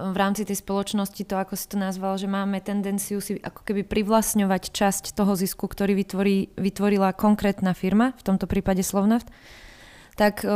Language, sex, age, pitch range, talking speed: Slovak, female, 20-39, 190-215 Hz, 165 wpm